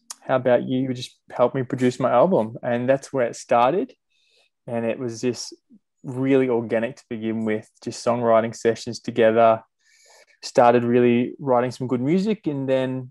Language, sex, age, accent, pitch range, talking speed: English, male, 20-39, Australian, 115-130 Hz, 165 wpm